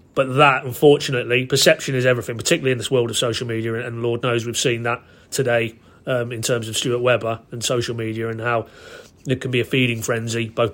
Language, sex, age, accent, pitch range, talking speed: English, male, 30-49, British, 120-135 Hz, 210 wpm